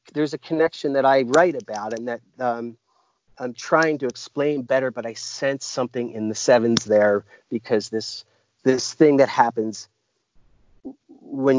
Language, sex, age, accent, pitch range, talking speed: English, male, 40-59, American, 115-150 Hz, 155 wpm